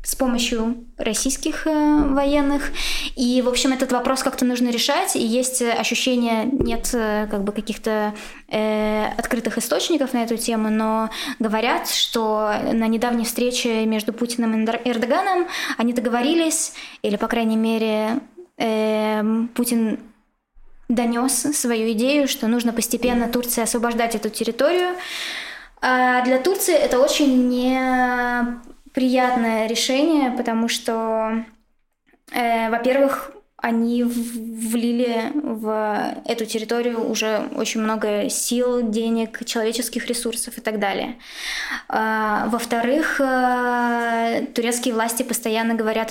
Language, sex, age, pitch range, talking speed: Russian, female, 20-39, 220-250 Hz, 110 wpm